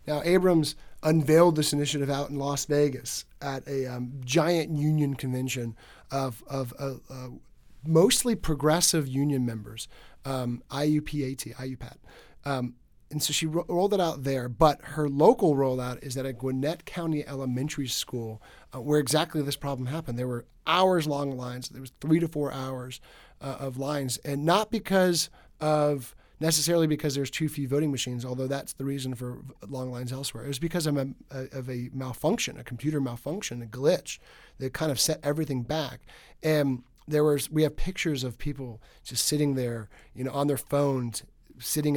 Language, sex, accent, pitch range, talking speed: English, male, American, 125-150 Hz, 170 wpm